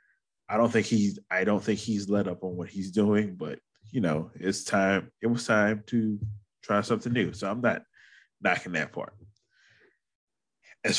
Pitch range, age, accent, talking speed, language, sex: 95-115 Hz, 20-39, American, 180 wpm, English, male